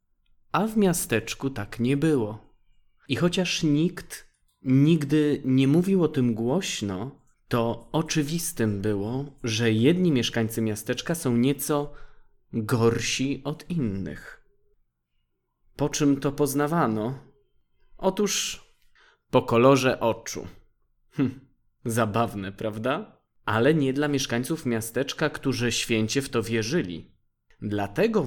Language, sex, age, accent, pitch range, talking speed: Polish, male, 20-39, native, 115-155 Hz, 100 wpm